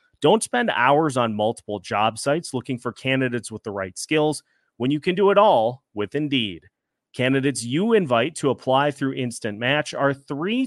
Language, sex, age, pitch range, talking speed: English, male, 30-49, 120-165 Hz, 180 wpm